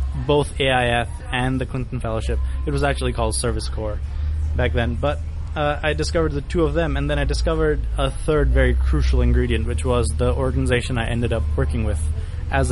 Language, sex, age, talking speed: English, male, 20-39, 195 wpm